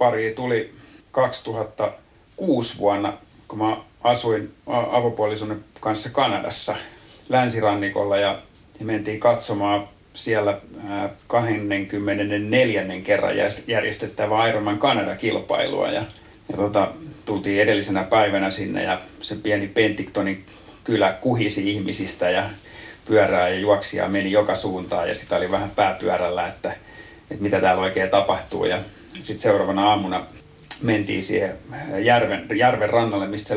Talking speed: 115 wpm